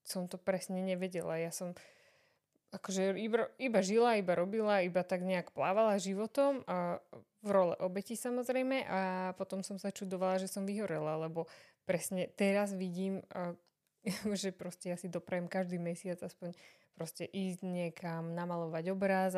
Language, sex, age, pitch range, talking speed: Slovak, female, 20-39, 175-200 Hz, 140 wpm